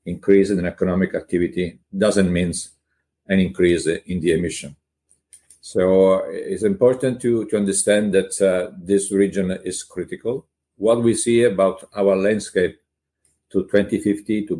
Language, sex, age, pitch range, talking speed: English, male, 50-69, 90-105 Hz, 130 wpm